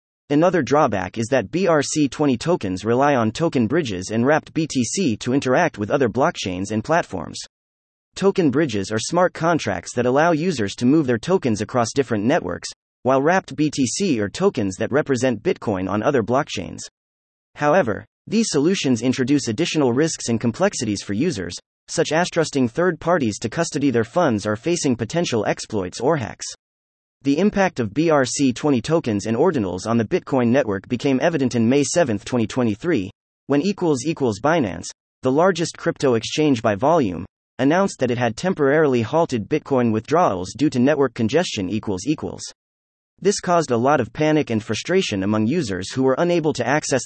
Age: 30-49